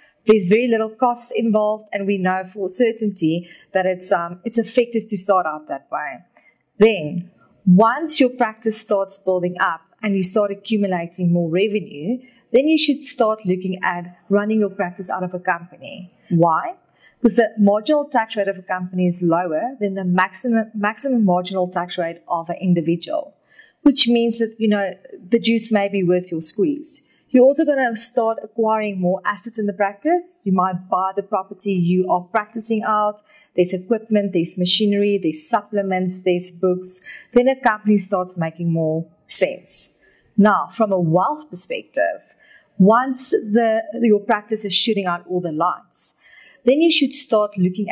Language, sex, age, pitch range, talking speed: English, female, 30-49, 180-225 Hz, 165 wpm